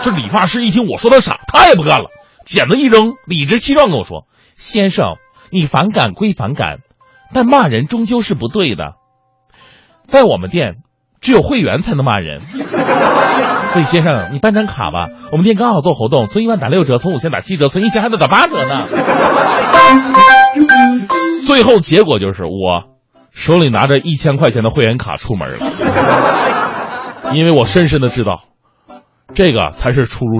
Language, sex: Chinese, male